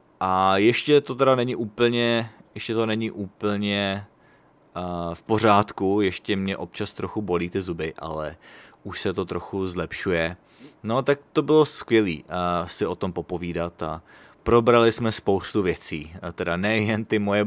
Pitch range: 90-115 Hz